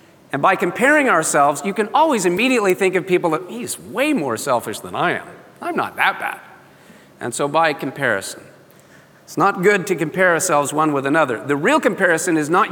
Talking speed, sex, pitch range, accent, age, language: 195 wpm, male, 145-200 Hz, American, 40-59, English